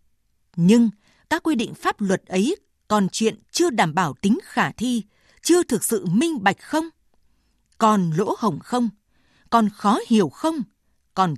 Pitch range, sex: 185-245 Hz, female